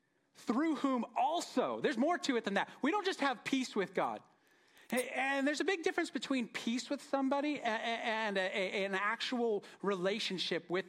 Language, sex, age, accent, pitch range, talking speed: English, male, 40-59, American, 165-250 Hz, 165 wpm